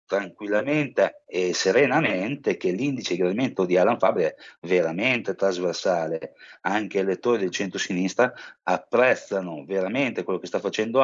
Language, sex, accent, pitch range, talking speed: Italian, male, native, 105-150 Hz, 130 wpm